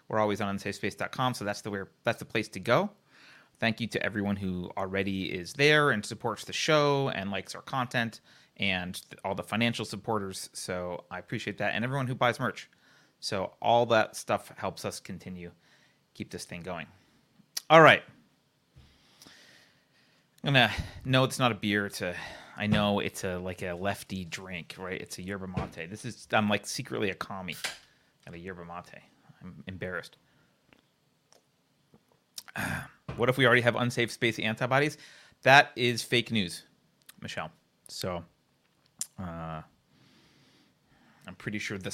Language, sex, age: English, male, 30-49